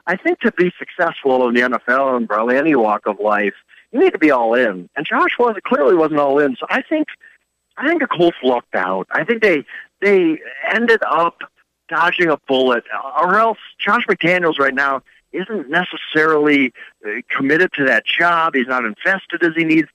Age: 50-69